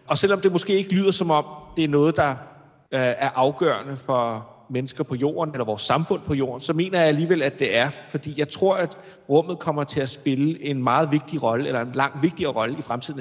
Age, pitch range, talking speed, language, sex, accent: 30-49, 130-155 Hz, 225 wpm, Danish, male, native